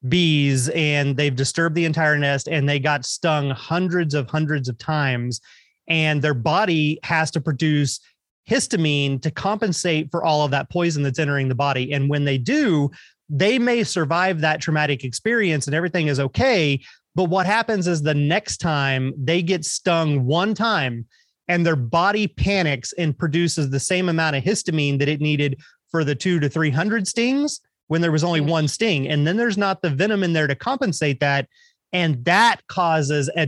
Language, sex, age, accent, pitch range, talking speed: English, male, 30-49, American, 145-180 Hz, 185 wpm